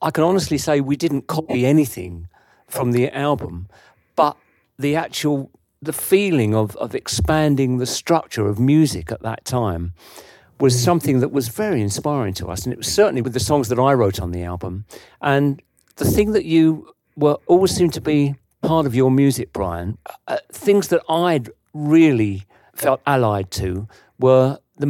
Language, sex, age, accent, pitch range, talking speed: English, male, 50-69, British, 110-150 Hz, 175 wpm